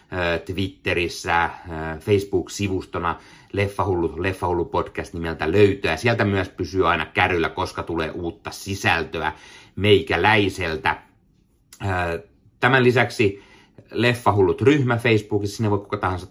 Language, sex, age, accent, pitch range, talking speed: Finnish, male, 30-49, native, 80-105 Hz, 105 wpm